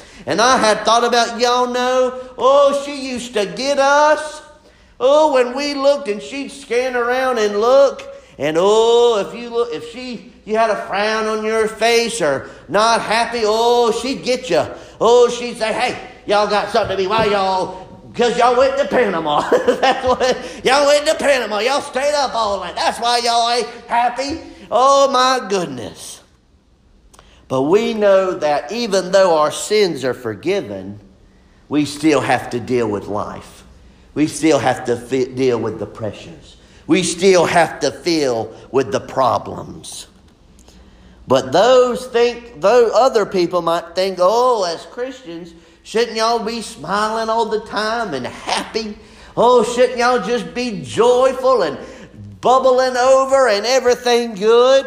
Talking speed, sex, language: 160 wpm, male, English